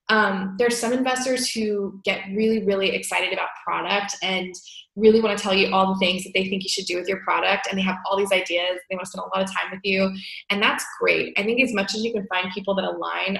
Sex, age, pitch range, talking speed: female, 20-39, 190-220 Hz, 265 wpm